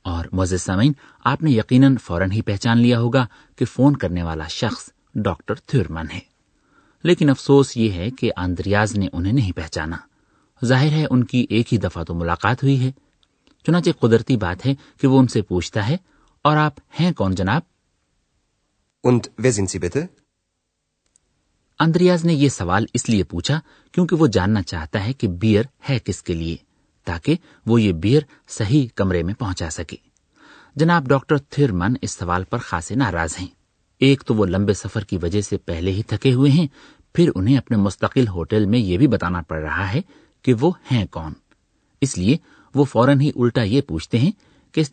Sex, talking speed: male, 175 wpm